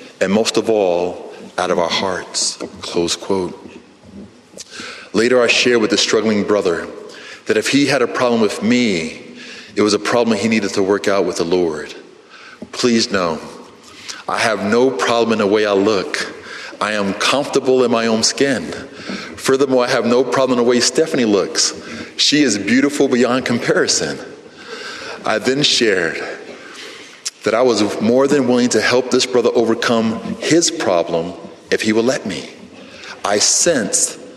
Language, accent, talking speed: English, American, 160 wpm